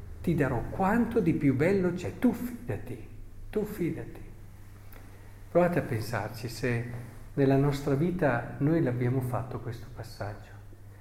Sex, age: male, 50-69